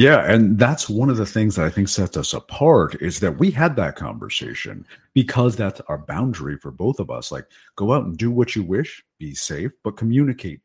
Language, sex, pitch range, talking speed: English, male, 85-125 Hz, 220 wpm